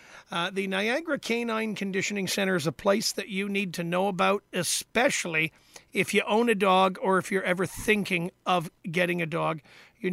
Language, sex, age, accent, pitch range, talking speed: English, male, 50-69, American, 175-200 Hz, 185 wpm